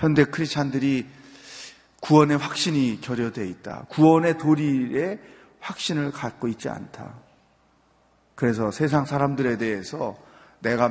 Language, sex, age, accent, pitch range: Korean, male, 30-49, native, 125-175 Hz